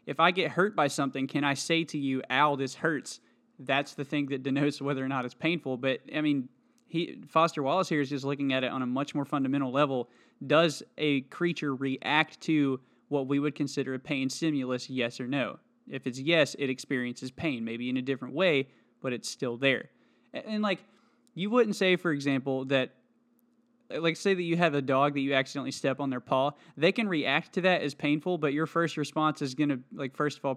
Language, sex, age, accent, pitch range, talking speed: English, male, 20-39, American, 130-165 Hz, 220 wpm